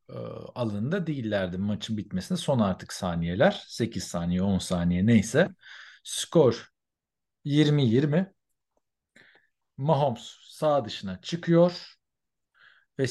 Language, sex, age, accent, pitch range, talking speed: Turkish, male, 50-69, native, 100-140 Hz, 85 wpm